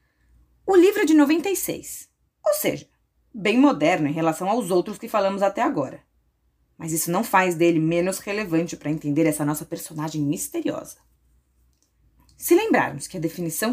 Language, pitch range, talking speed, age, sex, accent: Portuguese, 155-220 Hz, 155 wpm, 20-39, female, Brazilian